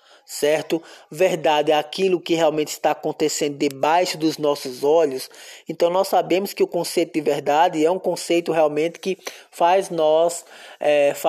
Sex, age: male, 20-39